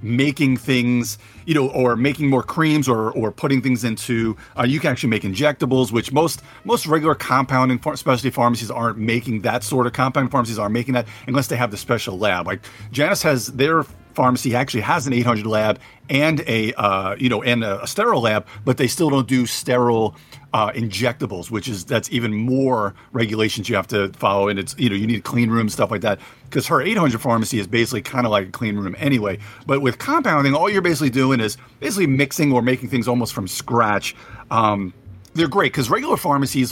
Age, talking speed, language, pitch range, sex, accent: 40-59, 210 wpm, English, 110-135 Hz, male, American